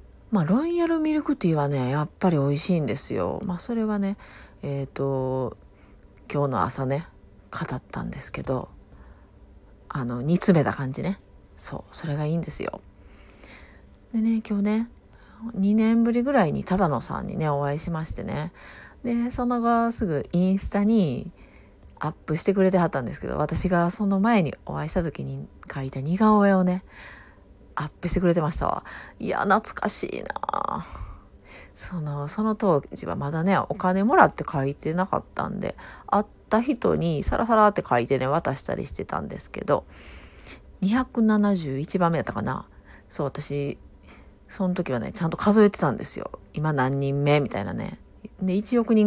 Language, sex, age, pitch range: Japanese, female, 40-59, 135-205 Hz